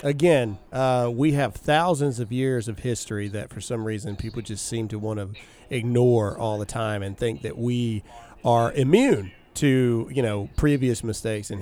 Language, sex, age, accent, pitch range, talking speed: English, male, 40-59, American, 110-130 Hz, 180 wpm